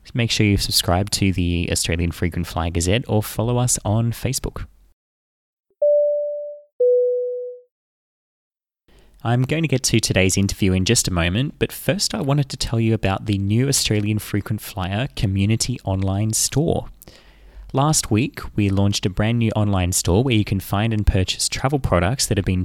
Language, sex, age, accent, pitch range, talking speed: English, male, 20-39, Australian, 95-115 Hz, 165 wpm